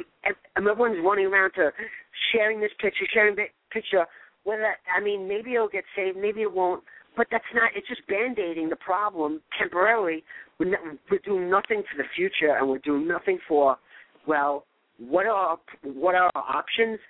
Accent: American